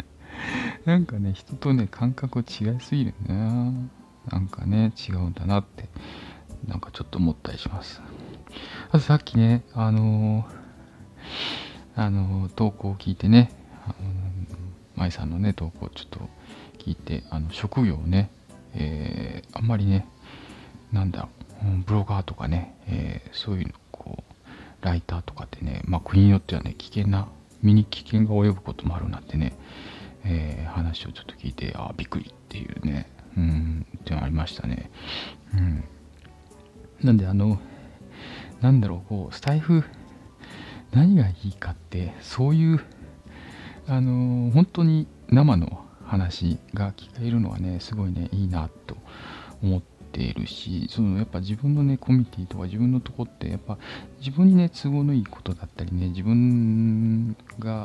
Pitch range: 85-115 Hz